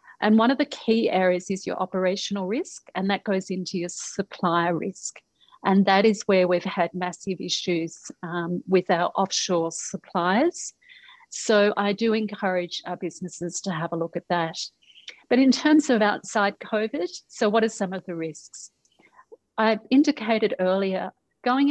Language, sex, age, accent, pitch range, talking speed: English, female, 40-59, Australian, 185-220 Hz, 165 wpm